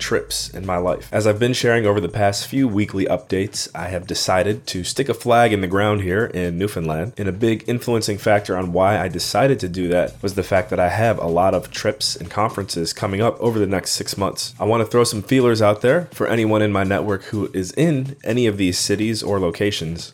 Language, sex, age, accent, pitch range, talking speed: English, male, 20-39, American, 95-110 Hz, 240 wpm